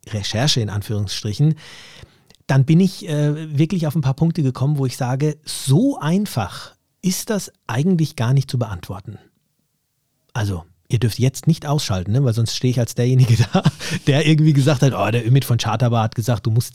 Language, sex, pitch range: German, male, 120-150 Hz